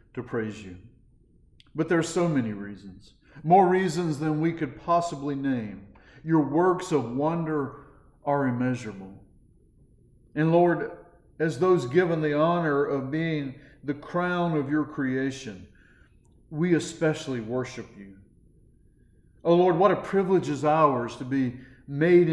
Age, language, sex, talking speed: 50-69, English, male, 135 wpm